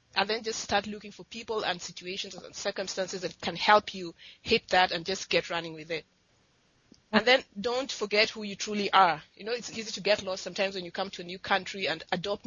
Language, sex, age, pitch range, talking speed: English, female, 30-49, 185-220 Hz, 230 wpm